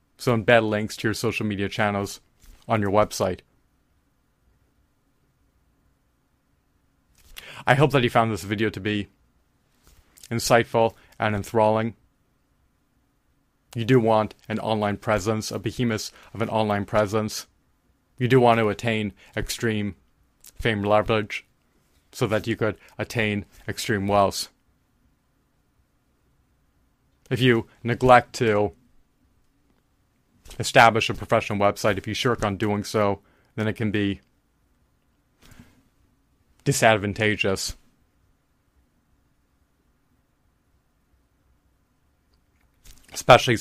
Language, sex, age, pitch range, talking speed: English, male, 30-49, 105-120 Hz, 95 wpm